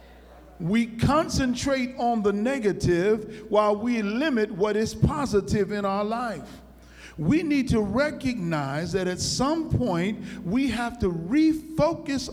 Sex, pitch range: male, 200-255 Hz